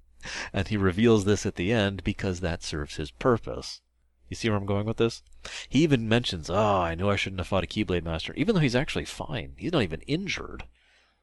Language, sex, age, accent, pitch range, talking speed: English, male, 30-49, American, 70-95 Hz, 220 wpm